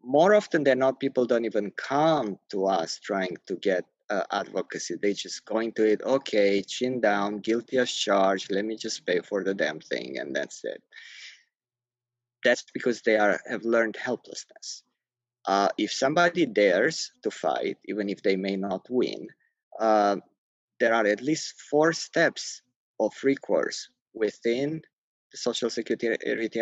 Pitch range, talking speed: 110-140 Hz, 155 wpm